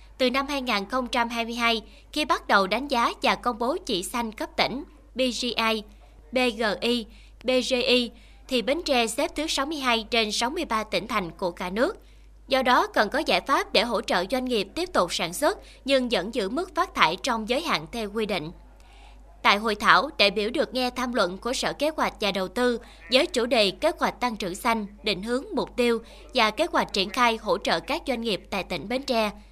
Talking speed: 205 wpm